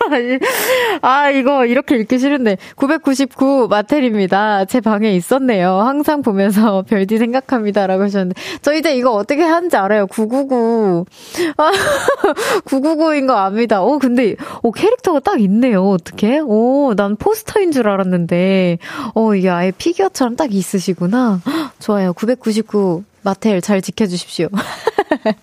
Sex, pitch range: female, 200-275 Hz